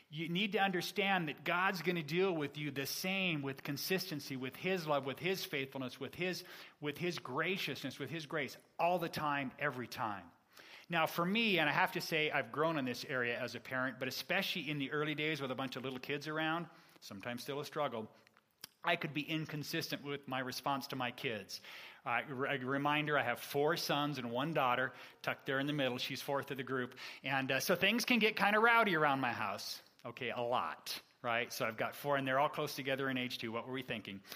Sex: male